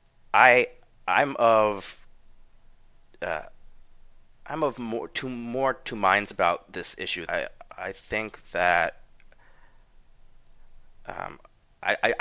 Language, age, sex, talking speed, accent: English, 30-49, male, 95 wpm, American